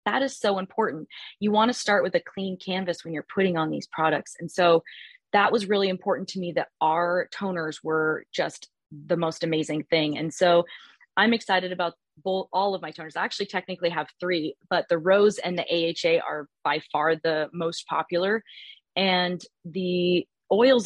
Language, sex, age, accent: English, female, 20-39, American